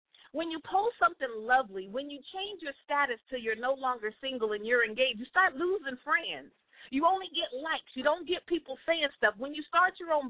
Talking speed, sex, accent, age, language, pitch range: 215 wpm, female, American, 40-59, English, 245-345 Hz